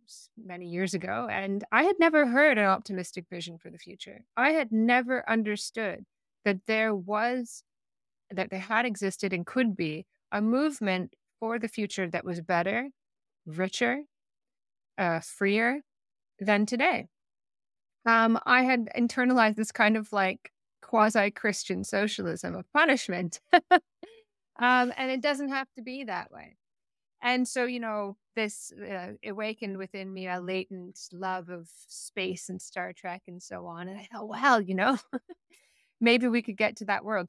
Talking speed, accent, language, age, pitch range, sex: 155 wpm, American, English, 30-49, 190-245 Hz, female